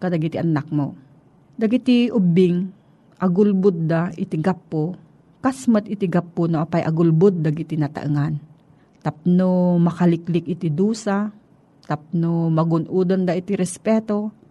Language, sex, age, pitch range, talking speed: Filipino, female, 40-59, 160-195 Hz, 120 wpm